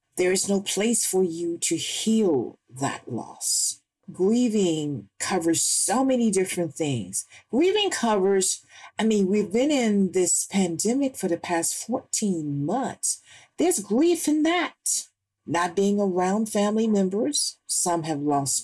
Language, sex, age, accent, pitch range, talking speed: English, female, 50-69, American, 155-220 Hz, 135 wpm